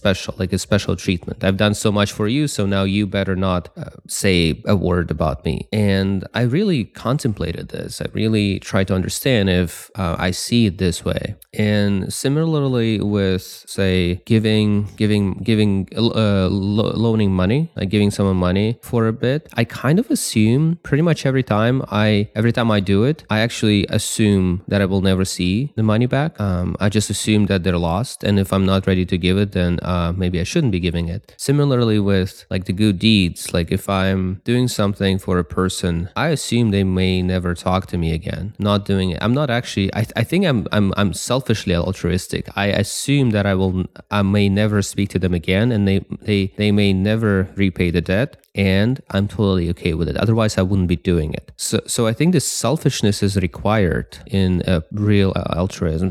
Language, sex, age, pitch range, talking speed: English, male, 20-39, 95-110 Hz, 200 wpm